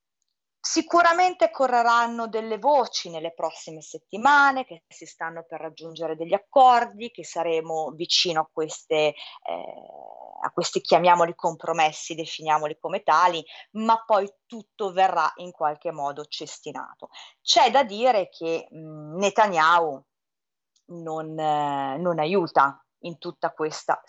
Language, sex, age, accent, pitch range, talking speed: Italian, female, 30-49, native, 160-225 Hz, 110 wpm